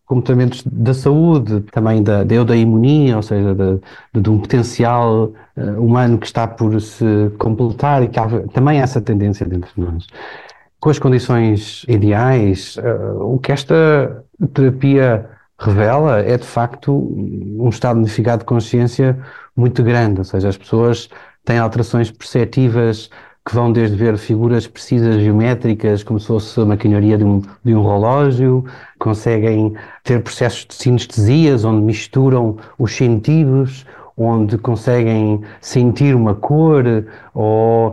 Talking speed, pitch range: 140 wpm, 110-130 Hz